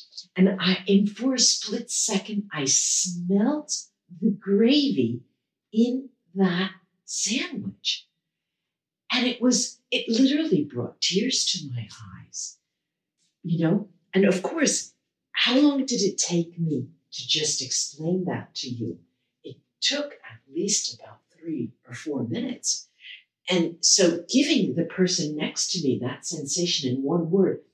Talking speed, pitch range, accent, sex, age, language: 135 wpm, 130-205 Hz, American, female, 50-69, English